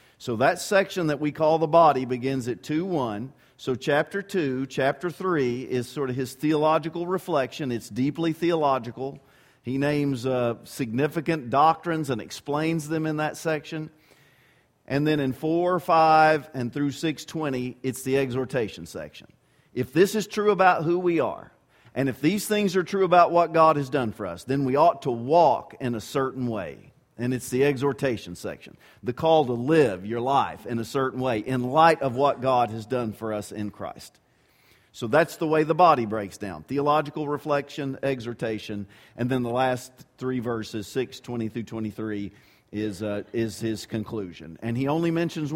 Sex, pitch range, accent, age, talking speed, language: male, 120-155 Hz, American, 50-69, 175 wpm, English